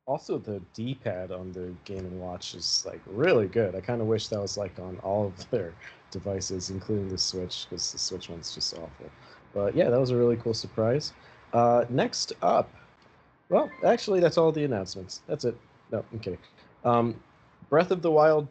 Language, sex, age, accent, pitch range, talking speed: English, male, 30-49, American, 100-125 Hz, 190 wpm